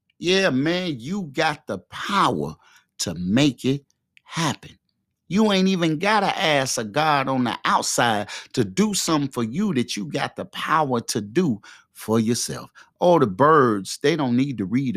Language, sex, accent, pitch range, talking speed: English, male, American, 125-175 Hz, 170 wpm